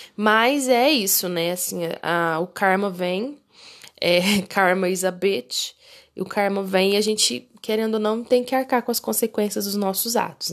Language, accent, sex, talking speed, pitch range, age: Portuguese, Brazilian, female, 170 wpm, 170-205 Hz, 20-39